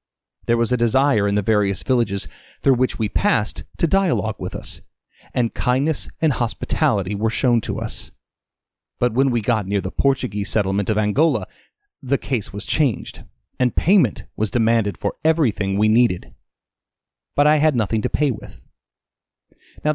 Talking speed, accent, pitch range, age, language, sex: 160 wpm, American, 100-130 Hz, 40-59, English, male